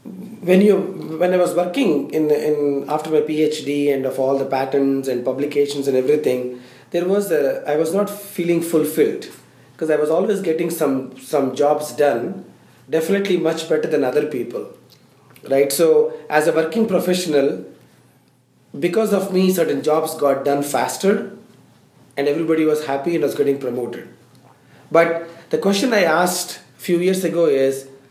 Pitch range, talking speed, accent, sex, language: 145-195 Hz, 160 wpm, Indian, male, English